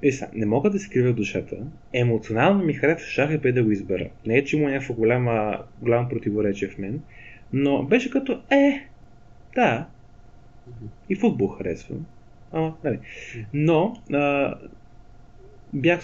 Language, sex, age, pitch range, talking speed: Bulgarian, male, 20-39, 115-140 Hz, 135 wpm